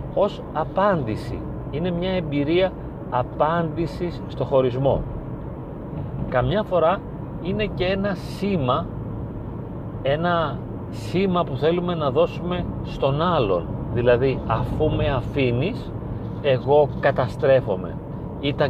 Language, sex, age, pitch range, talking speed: Greek, male, 40-59, 120-160 Hz, 95 wpm